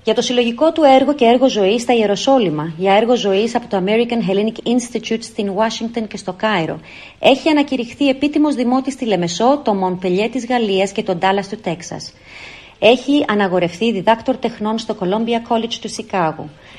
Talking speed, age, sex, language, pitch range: 170 wpm, 30-49, female, English, 195-250 Hz